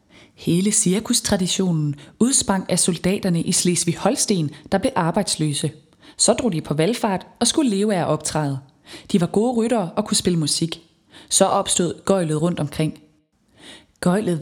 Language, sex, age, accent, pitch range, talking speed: Danish, female, 20-39, native, 160-210 Hz, 145 wpm